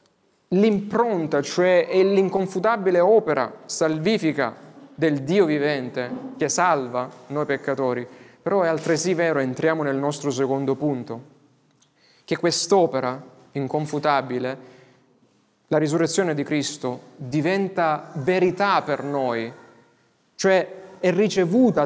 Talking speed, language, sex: 100 wpm, Italian, male